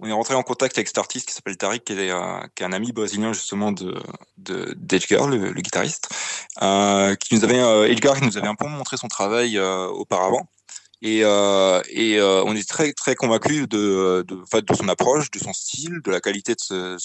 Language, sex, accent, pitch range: French, male, French, 100-120 Hz